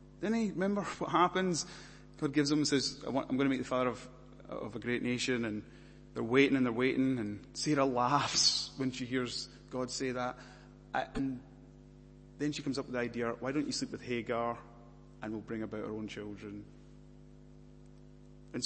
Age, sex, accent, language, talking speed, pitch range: 30-49, male, British, English, 185 wpm, 105-140 Hz